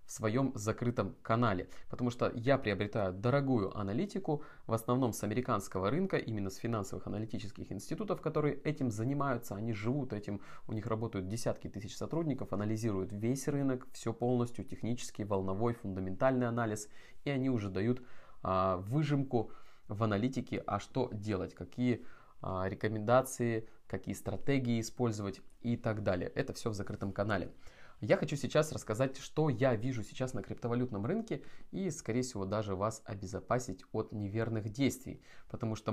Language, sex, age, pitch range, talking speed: Russian, male, 20-39, 105-130 Hz, 145 wpm